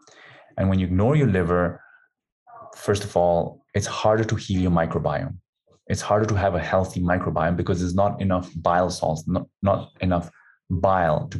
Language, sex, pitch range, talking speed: English, male, 90-110 Hz, 175 wpm